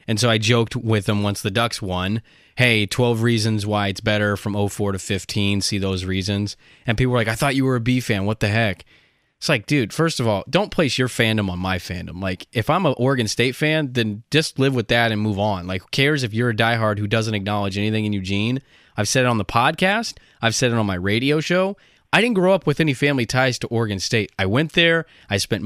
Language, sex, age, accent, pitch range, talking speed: English, male, 20-39, American, 105-145 Hz, 250 wpm